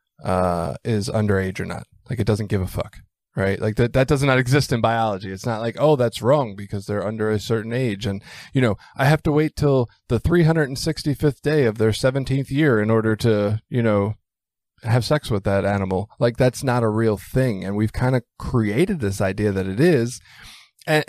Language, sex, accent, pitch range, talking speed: English, male, American, 105-135 Hz, 210 wpm